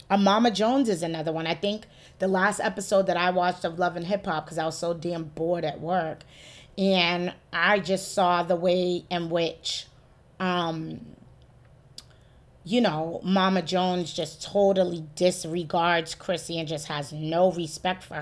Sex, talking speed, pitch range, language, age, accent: female, 160 wpm, 160-195 Hz, English, 30-49, American